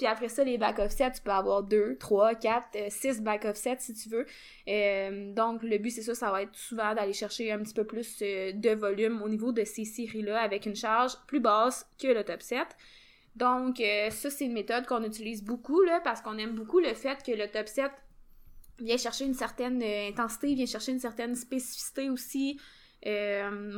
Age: 20-39